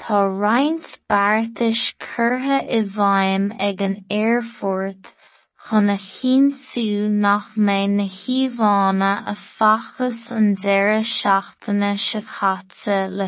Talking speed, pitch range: 70 wpm, 195-230 Hz